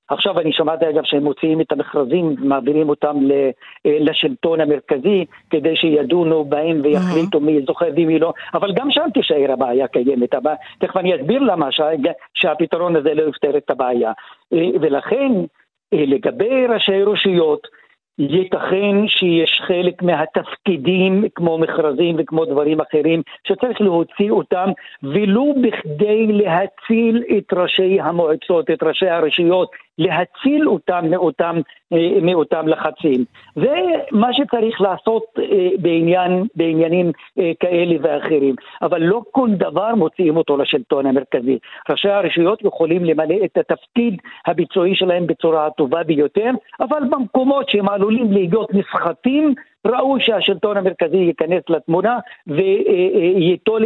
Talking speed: 115 wpm